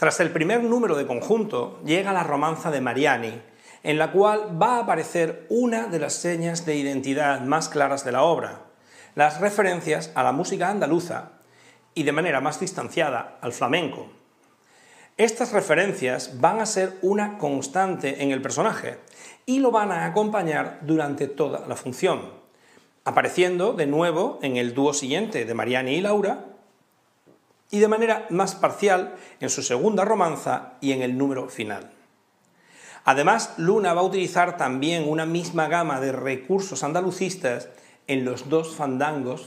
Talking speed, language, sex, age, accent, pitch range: 155 wpm, Spanish, male, 40-59, Spanish, 140-190 Hz